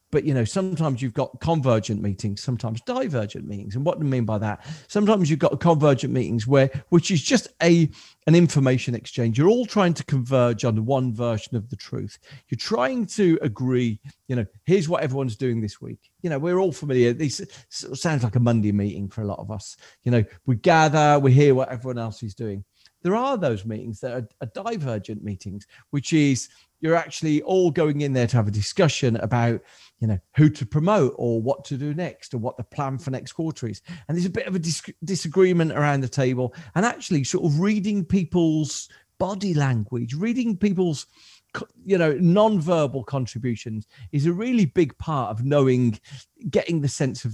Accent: British